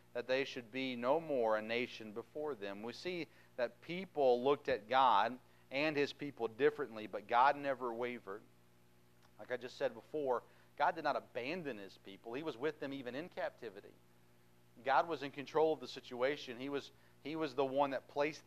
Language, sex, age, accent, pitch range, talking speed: English, male, 40-59, American, 100-135 Hz, 190 wpm